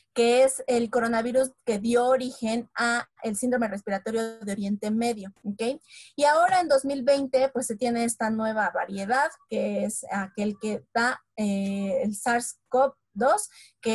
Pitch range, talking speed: 210-260 Hz, 145 wpm